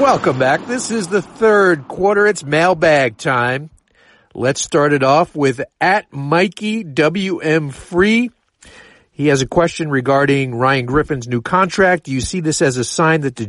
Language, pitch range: English, 130-170 Hz